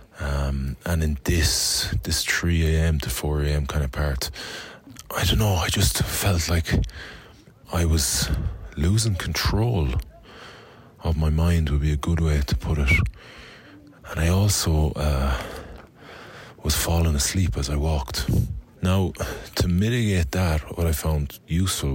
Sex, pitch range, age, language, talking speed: male, 70-85 Hz, 20-39, English, 145 wpm